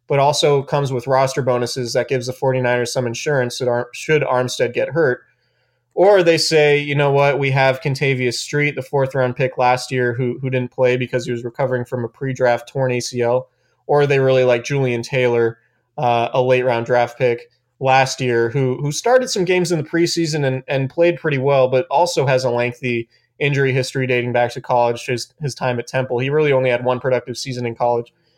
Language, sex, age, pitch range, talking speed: English, male, 20-39, 125-145 Hz, 210 wpm